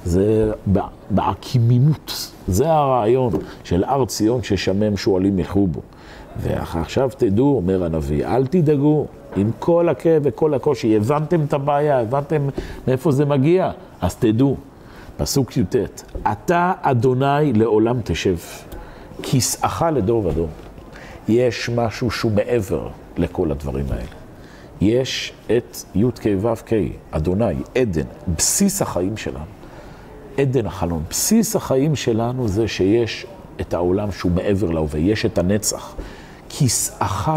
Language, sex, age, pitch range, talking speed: Hebrew, male, 50-69, 95-135 Hz, 115 wpm